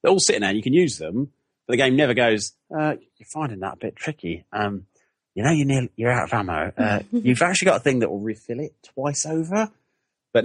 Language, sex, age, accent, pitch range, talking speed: English, male, 30-49, British, 95-125 Hz, 245 wpm